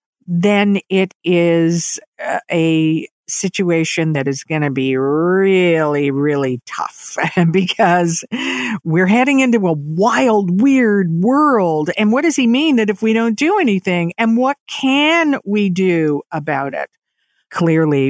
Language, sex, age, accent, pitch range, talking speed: English, female, 50-69, American, 145-190 Hz, 135 wpm